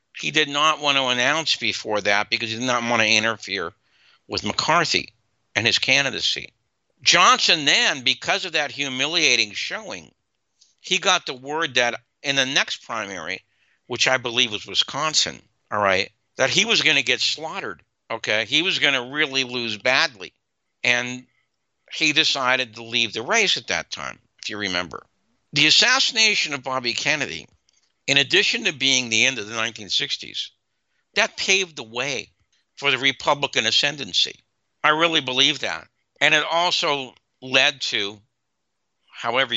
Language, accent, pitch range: English, American, 115-150 Hz